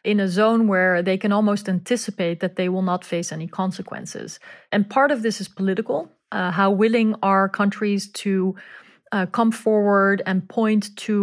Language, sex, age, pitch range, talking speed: English, female, 30-49, 185-220 Hz, 175 wpm